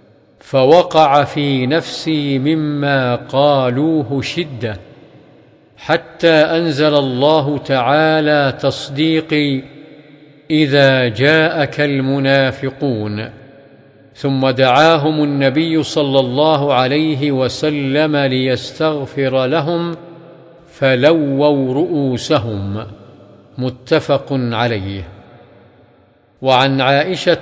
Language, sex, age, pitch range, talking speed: Arabic, male, 50-69, 130-155 Hz, 65 wpm